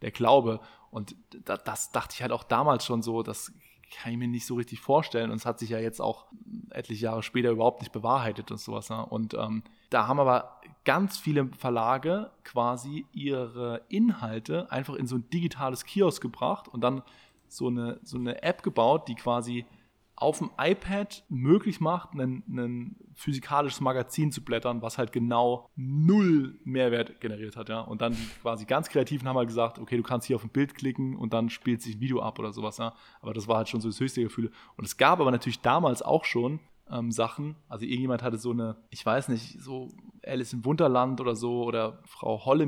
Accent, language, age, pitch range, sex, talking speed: German, German, 20-39, 115-130 Hz, male, 200 wpm